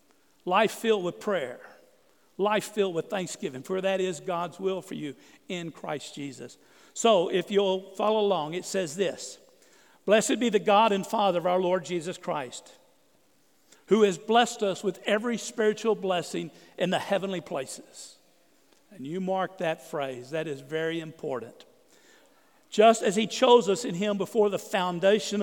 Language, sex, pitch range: English, male, 180-220 Hz